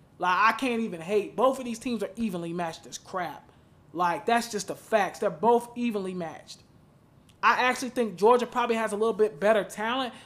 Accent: American